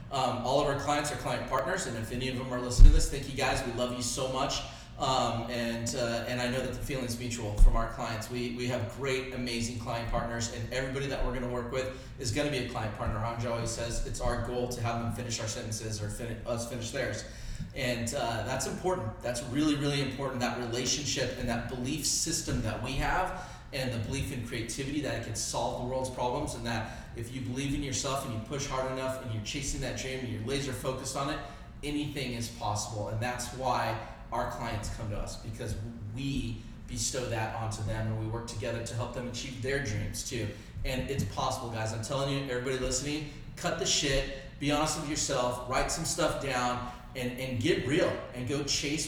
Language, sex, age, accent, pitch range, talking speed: English, male, 30-49, American, 115-135 Hz, 225 wpm